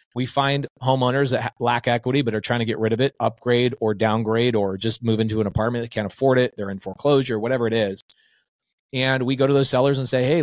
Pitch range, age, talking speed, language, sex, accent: 120-150 Hz, 30-49, 240 wpm, English, male, American